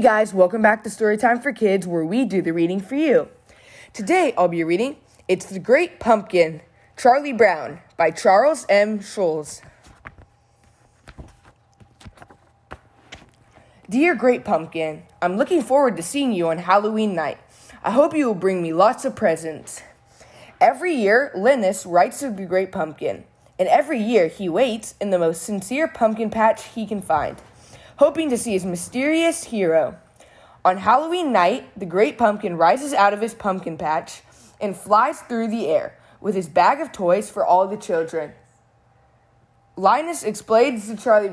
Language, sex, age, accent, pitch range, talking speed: English, female, 20-39, American, 175-255 Hz, 160 wpm